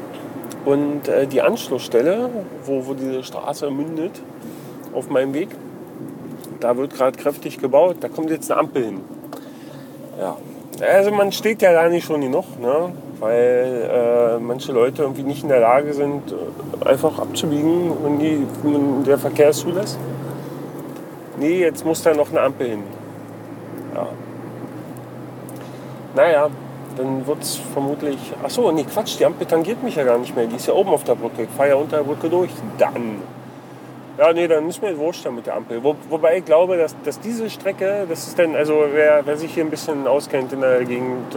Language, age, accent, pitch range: German, 40-59, German, 140-175 Hz